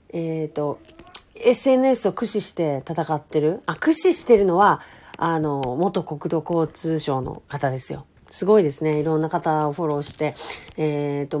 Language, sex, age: Japanese, female, 40-59